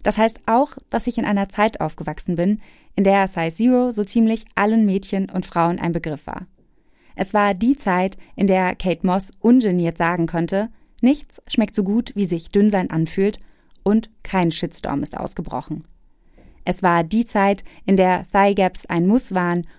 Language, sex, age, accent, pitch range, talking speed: German, female, 20-39, German, 180-225 Hz, 175 wpm